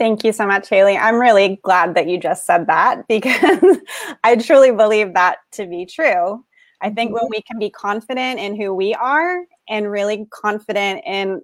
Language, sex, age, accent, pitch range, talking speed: English, female, 20-39, American, 190-235 Hz, 190 wpm